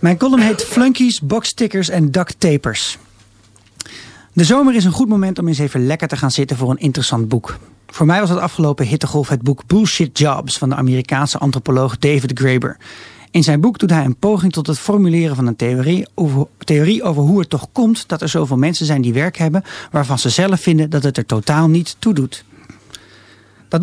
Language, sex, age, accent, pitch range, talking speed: Dutch, male, 40-59, Dutch, 130-180 Hz, 200 wpm